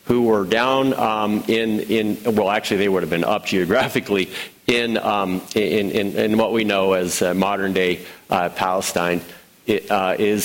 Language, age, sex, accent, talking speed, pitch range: English, 50-69, male, American, 160 wpm, 90-110 Hz